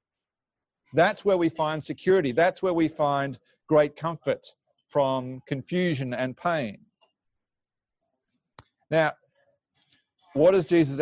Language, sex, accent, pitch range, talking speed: English, male, Australian, 130-165 Hz, 105 wpm